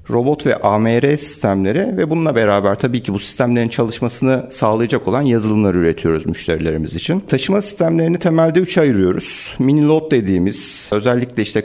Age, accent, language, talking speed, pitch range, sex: 50-69, native, Turkish, 140 wpm, 105-155 Hz, male